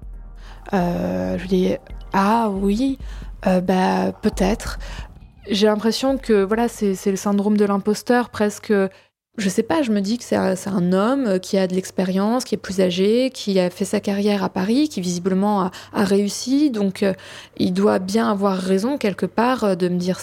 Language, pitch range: French, 185-220 Hz